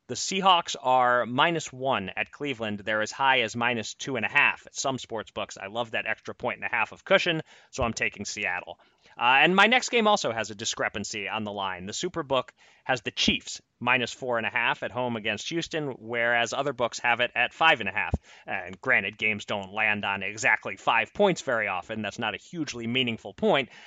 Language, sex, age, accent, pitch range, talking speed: English, male, 30-49, American, 110-140 Hz, 220 wpm